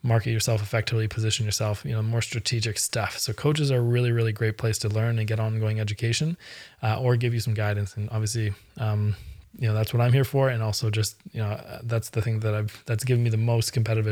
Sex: male